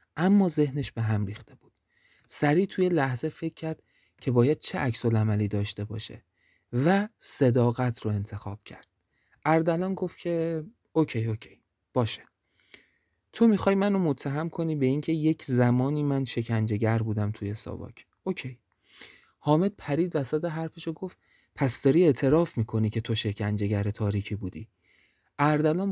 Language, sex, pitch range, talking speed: Persian, male, 110-160 Hz, 140 wpm